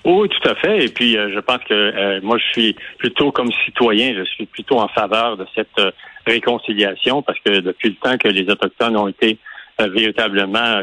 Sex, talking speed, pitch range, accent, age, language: male, 210 wpm, 105-120 Hz, French, 50-69, French